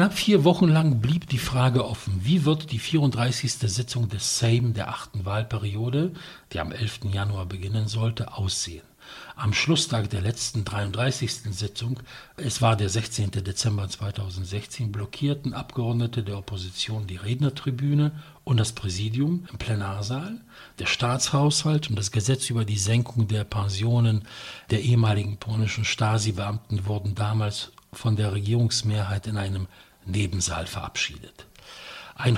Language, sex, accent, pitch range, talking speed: English, male, German, 105-135 Hz, 135 wpm